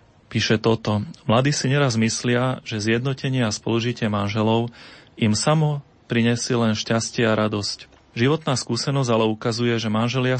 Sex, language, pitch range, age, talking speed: male, Slovak, 110-120 Hz, 30-49, 140 wpm